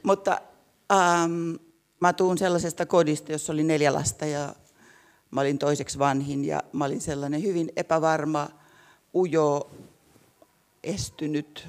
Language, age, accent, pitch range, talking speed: Finnish, 60-79, native, 145-165 Hz, 120 wpm